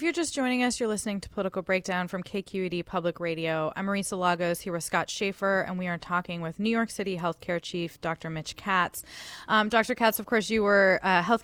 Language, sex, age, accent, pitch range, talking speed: English, female, 20-39, American, 185-250 Hz, 225 wpm